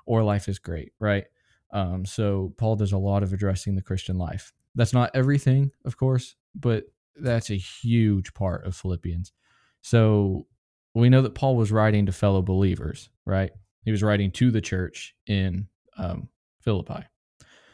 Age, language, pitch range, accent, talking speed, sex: 20-39, English, 100-120 Hz, American, 160 wpm, male